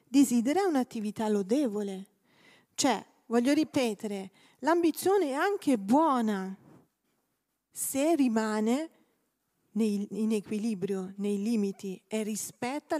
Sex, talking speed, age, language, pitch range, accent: female, 85 wpm, 40-59, Italian, 210-270 Hz, native